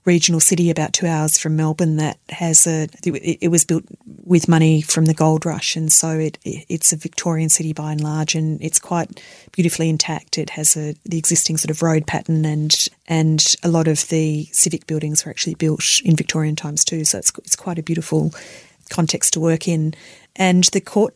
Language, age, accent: English, 30-49, Australian